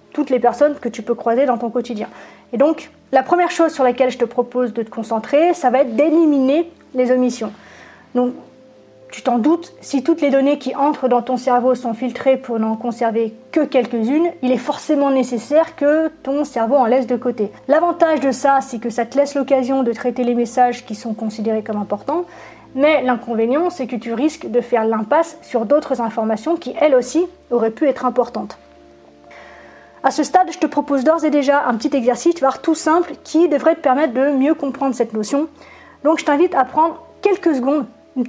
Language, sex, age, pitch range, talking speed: French, female, 20-39, 240-305 Hz, 200 wpm